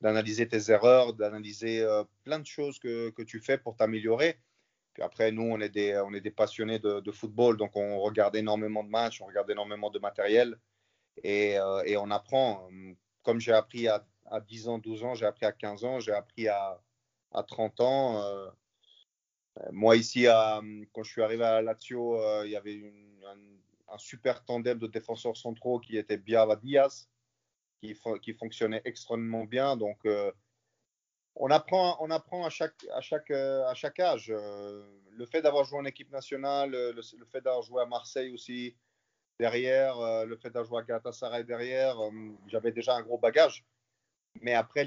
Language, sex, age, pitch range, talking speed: French, male, 30-49, 105-125 Hz, 185 wpm